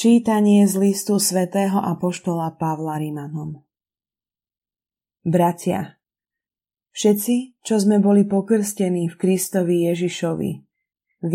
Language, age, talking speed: Slovak, 20-39, 90 wpm